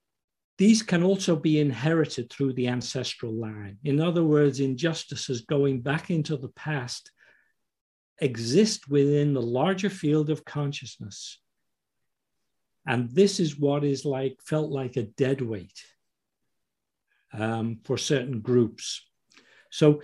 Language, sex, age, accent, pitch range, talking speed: English, male, 50-69, British, 125-155 Hz, 125 wpm